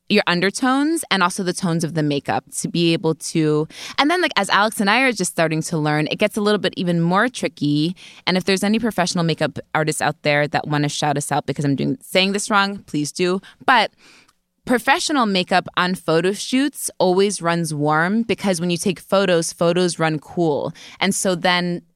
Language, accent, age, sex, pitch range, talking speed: English, American, 20-39, female, 160-205 Hz, 210 wpm